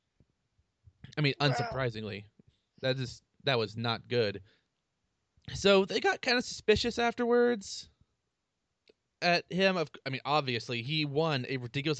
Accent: American